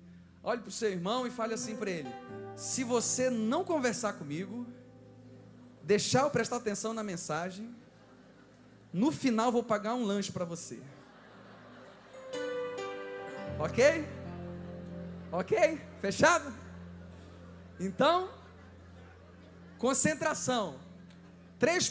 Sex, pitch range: male, 180-295 Hz